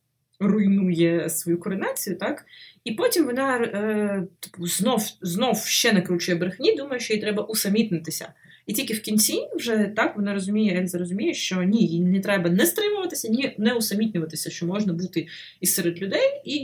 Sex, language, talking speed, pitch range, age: female, Ukrainian, 155 wpm, 170-220 Hz, 20-39